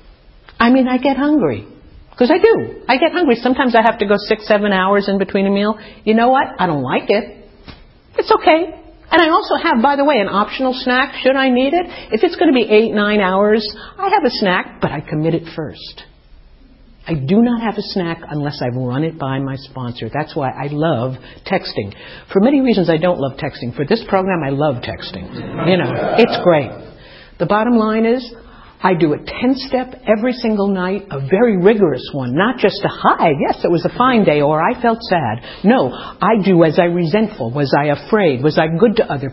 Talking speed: 215 wpm